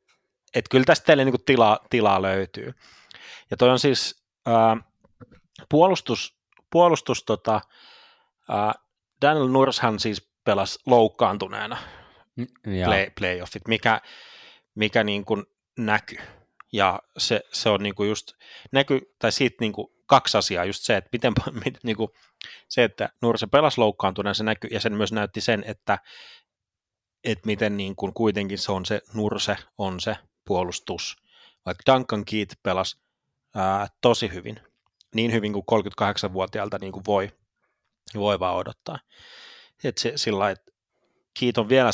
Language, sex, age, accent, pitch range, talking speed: Finnish, male, 30-49, native, 100-120 Hz, 130 wpm